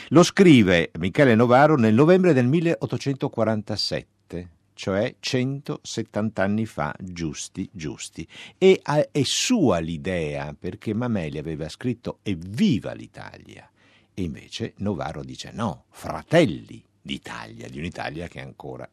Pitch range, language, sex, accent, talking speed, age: 85-125 Hz, Italian, male, native, 110 wpm, 60-79